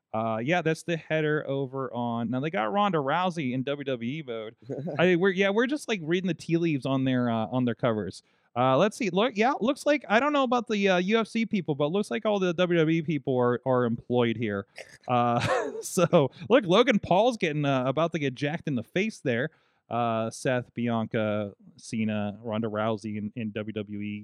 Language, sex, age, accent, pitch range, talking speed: English, male, 20-39, American, 115-155 Hz, 200 wpm